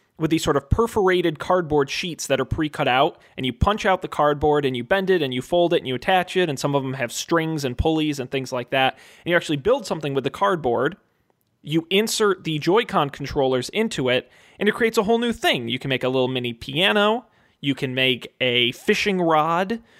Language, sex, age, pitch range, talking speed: English, male, 20-39, 135-175 Hz, 230 wpm